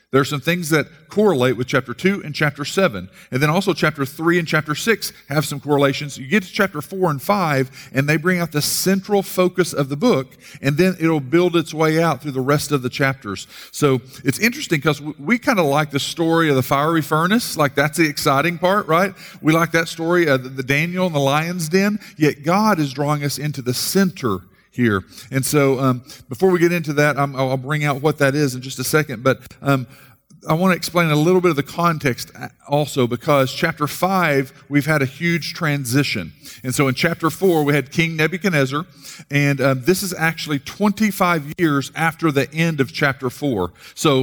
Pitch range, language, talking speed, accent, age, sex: 140-170 Hz, English, 210 wpm, American, 50-69, male